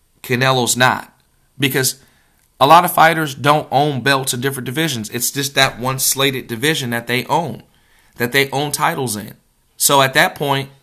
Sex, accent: male, American